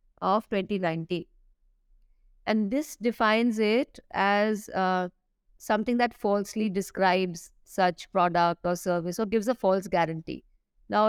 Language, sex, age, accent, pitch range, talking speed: English, female, 50-69, Indian, 180-220 Hz, 120 wpm